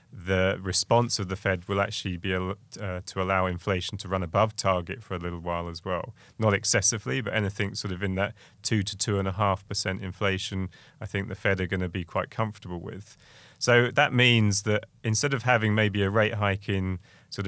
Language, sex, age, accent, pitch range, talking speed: English, male, 30-49, British, 95-110 Hz, 215 wpm